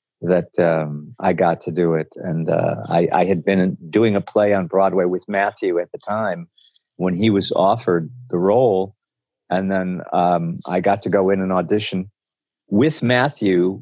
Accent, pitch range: American, 95-115 Hz